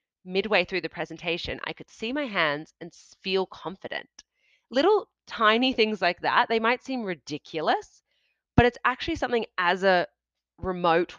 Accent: Australian